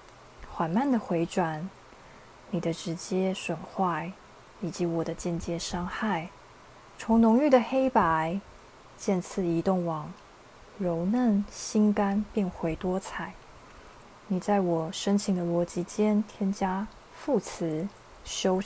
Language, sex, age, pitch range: Chinese, female, 20-39, 175-215 Hz